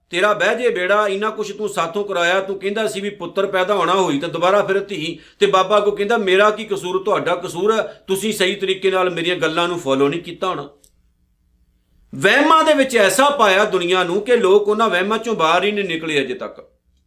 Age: 50-69